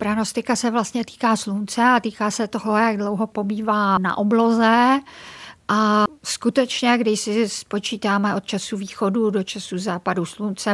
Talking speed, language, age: 145 wpm, Czech, 50-69